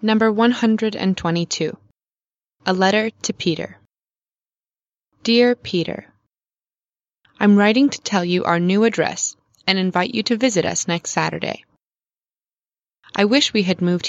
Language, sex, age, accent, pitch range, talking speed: Russian, female, 20-39, American, 170-205 Hz, 125 wpm